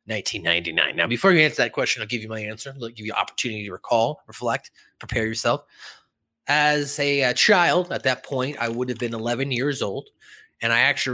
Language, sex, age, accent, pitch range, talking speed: English, male, 20-39, American, 120-155 Hz, 215 wpm